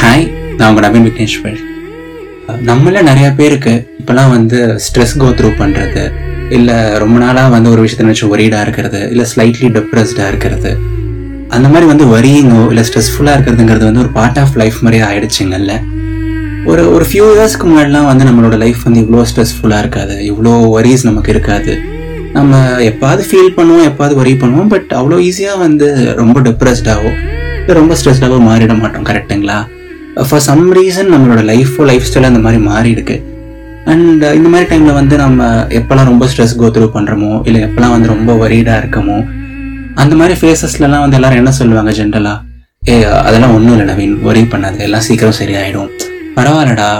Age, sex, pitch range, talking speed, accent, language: 20-39, male, 110-135 Hz, 155 wpm, native, Tamil